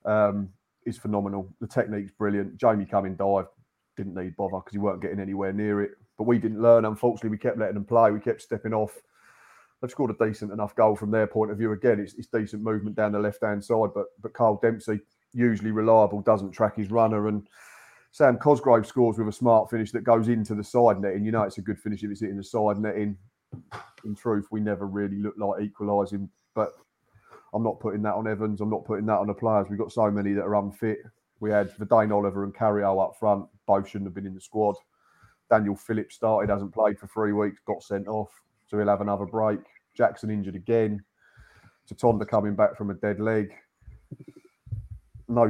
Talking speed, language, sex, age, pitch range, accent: 210 wpm, English, male, 30-49, 100-110 Hz, British